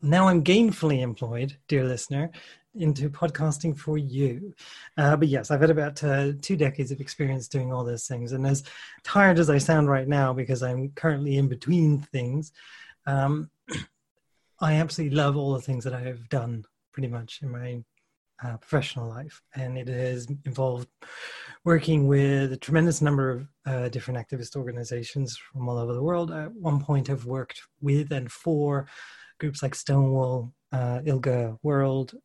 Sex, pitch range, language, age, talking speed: male, 130-155 Hz, English, 30-49, 165 wpm